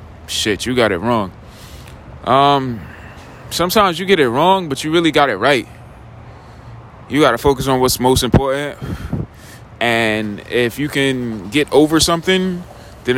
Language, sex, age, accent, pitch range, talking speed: English, male, 20-39, American, 100-150 Hz, 150 wpm